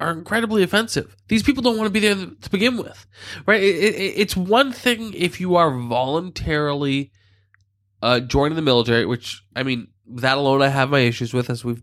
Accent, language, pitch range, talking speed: American, English, 105-145 Hz, 200 wpm